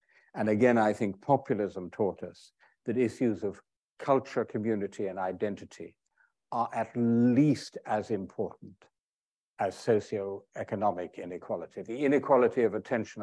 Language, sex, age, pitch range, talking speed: English, male, 60-79, 95-130 Hz, 120 wpm